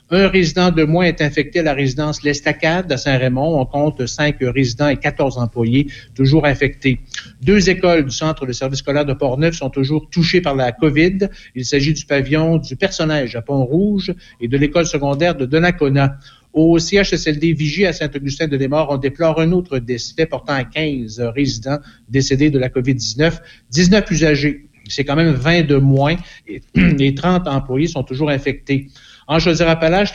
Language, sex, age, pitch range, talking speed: French, male, 60-79, 135-165 Hz, 180 wpm